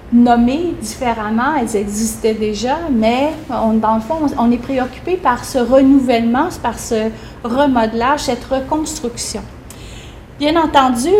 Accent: Canadian